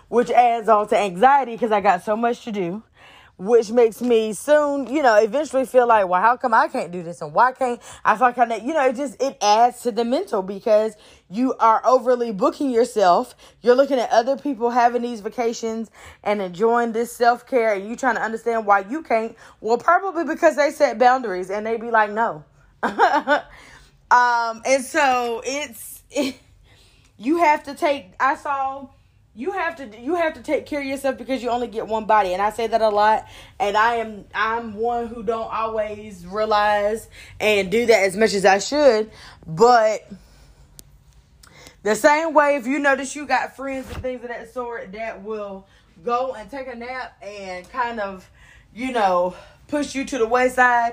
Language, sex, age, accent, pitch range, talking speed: English, female, 20-39, American, 220-275 Hz, 190 wpm